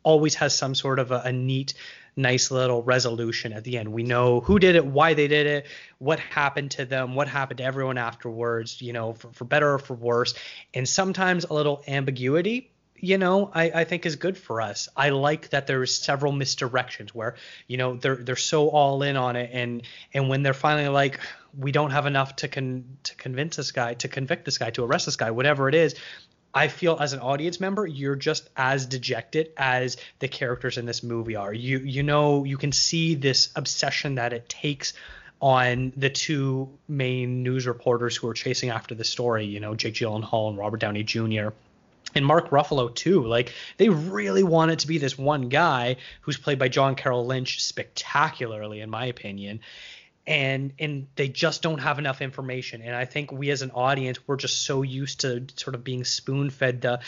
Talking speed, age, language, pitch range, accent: 205 wpm, 30-49, English, 125-145 Hz, American